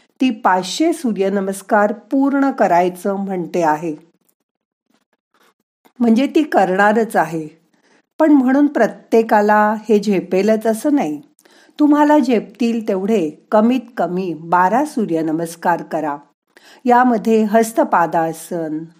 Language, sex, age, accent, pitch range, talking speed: Marathi, female, 50-69, native, 180-250 Hz, 90 wpm